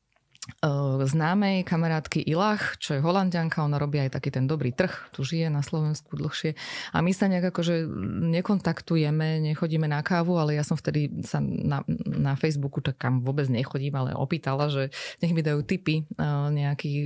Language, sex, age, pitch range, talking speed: Slovak, female, 20-39, 140-170 Hz, 170 wpm